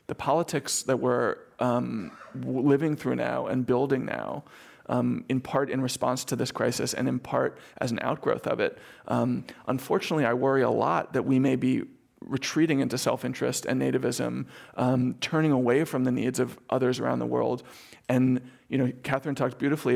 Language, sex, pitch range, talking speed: English, male, 125-135 Hz, 175 wpm